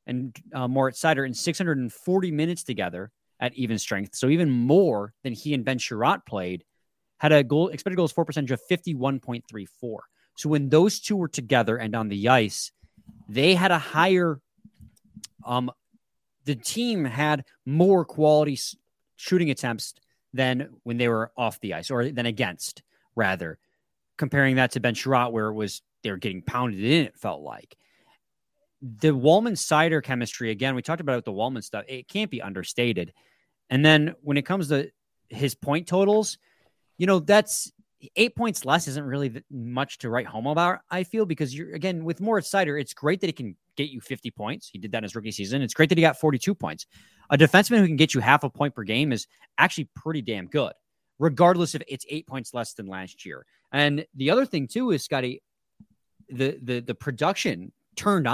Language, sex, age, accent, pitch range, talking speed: English, male, 30-49, American, 120-165 Hz, 190 wpm